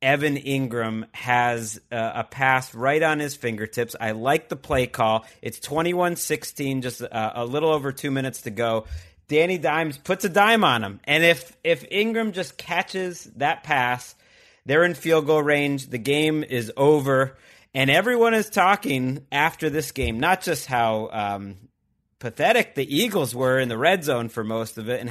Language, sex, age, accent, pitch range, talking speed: English, male, 30-49, American, 125-170 Hz, 170 wpm